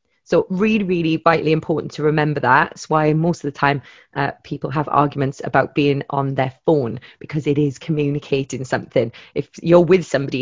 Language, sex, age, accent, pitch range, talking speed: English, female, 30-49, British, 145-190 Hz, 185 wpm